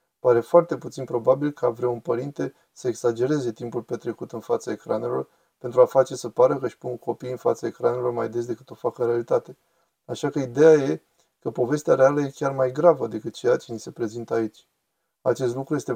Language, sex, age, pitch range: Romanian, male, 20-39, 120-170 Hz